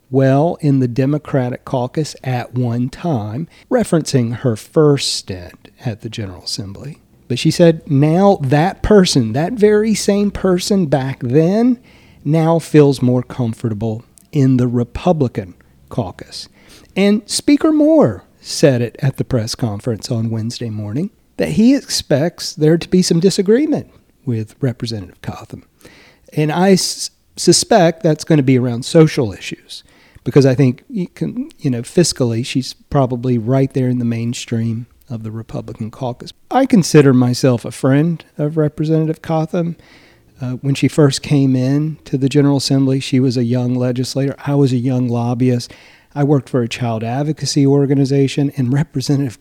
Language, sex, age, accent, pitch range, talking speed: English, male, 40-59, American, 120-155 Hz, 150 wpm